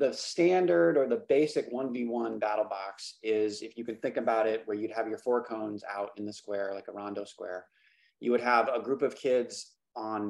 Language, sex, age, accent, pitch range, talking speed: English, male, 20-39, American, 105-120 Hz, 215 wpm